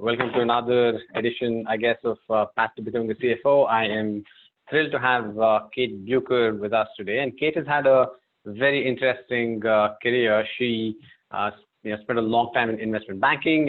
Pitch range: 105-120 Hz